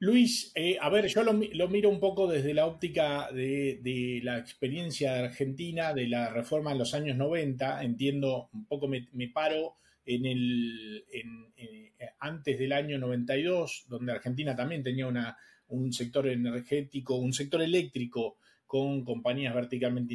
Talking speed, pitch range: 160 wpm, 130-205 Hz